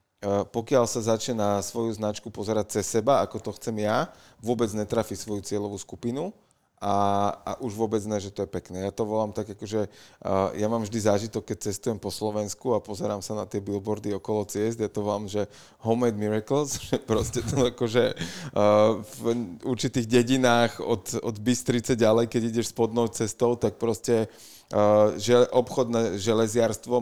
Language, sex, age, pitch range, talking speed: Slovak, male, 30-49, 105-120 Hz, 175 wpm